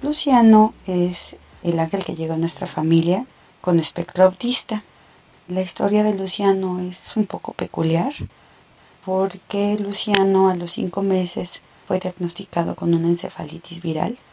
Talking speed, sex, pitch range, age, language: 135 wpm, female, 175-200 Hz, 40-59, Spanish